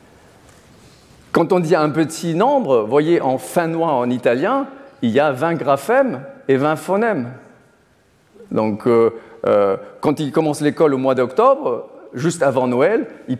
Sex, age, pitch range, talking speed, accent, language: male, 50-69, 140-195 Hz, 150 wpm, French, French